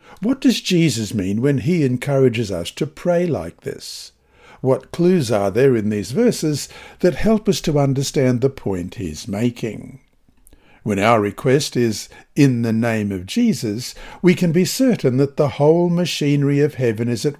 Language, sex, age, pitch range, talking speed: English, male, 60-79, 120-160 Hz, 170 wpm